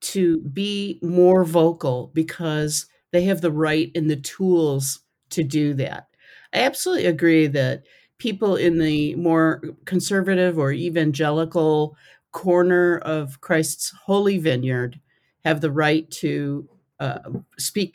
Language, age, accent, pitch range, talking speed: English, 50-69, American, 140-180 Hz, 125 wpm